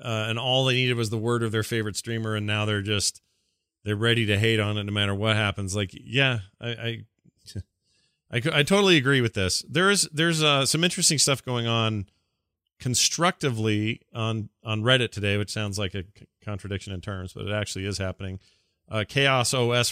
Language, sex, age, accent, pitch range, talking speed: English, male, 40-59, American, 95-115 Hz, 195 wpm